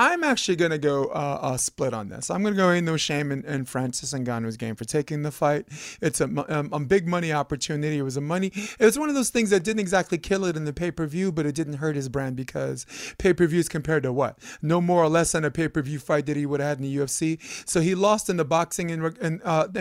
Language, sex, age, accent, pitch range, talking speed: English, male, 30-49, American, 150-200 Hz, 275 wpm